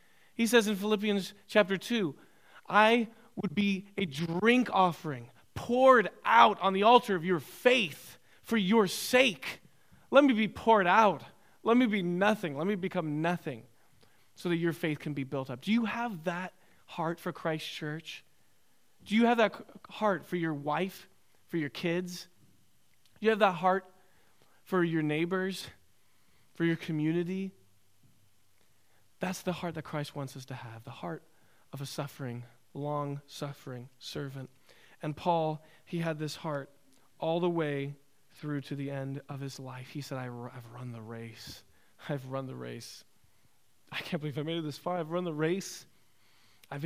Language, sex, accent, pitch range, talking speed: English, male, American, 140-185 Hz, 165 wpm